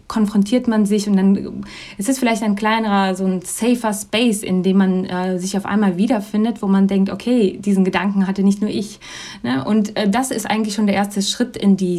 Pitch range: 190-215 Hz